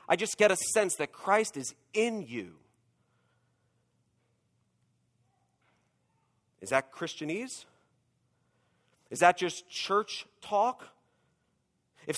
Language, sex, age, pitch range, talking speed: English, male, 40-59, 145-195 Hz, 95 wpm